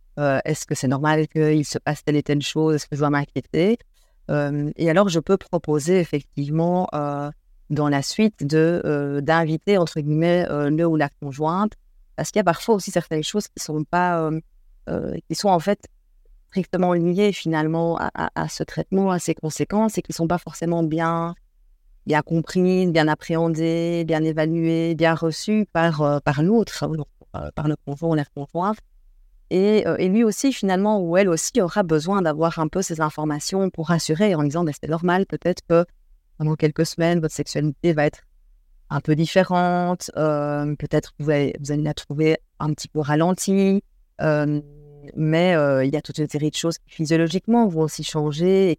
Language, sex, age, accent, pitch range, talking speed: French, female, 40-59, French, 150-180 Hz, 190 wpm